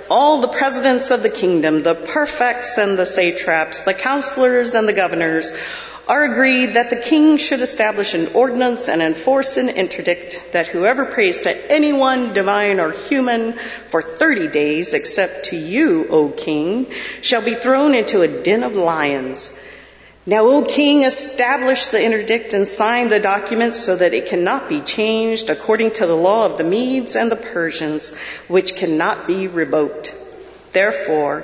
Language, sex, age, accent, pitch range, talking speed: English, female, 40-59, American, 170-245 Hz, 160 wpm